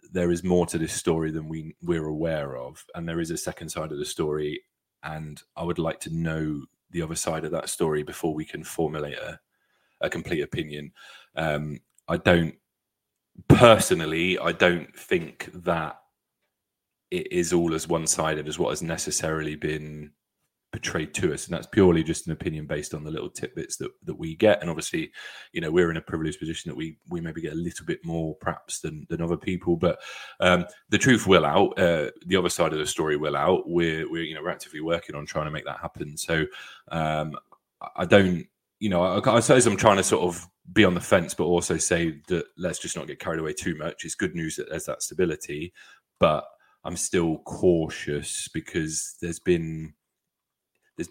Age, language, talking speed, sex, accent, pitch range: 30-49, English, 205 wpm, male, British, 75-85 Hz